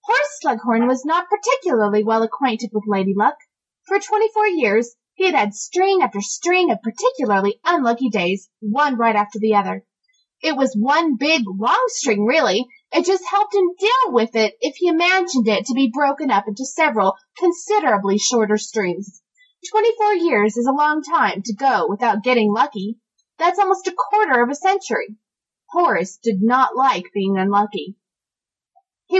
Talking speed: 165 wpm